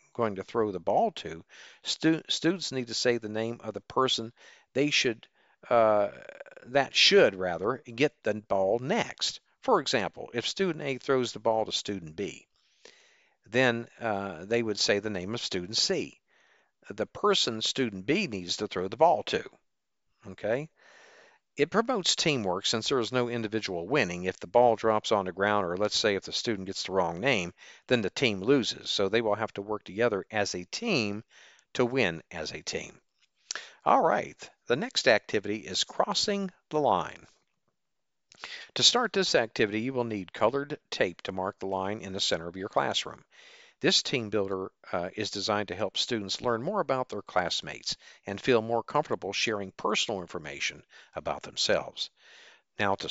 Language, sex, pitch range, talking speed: English, male, 100-130 Hz, 175 wpm